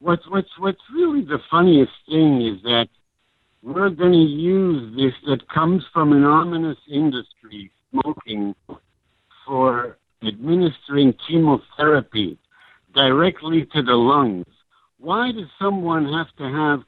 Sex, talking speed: male, 120 wpm